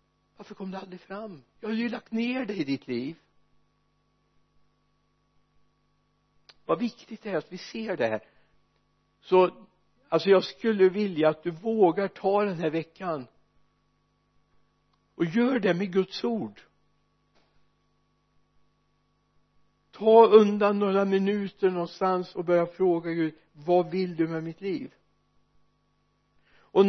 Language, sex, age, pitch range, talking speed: Swedish, male, 60-79, 165-205 Hz, 125 wpm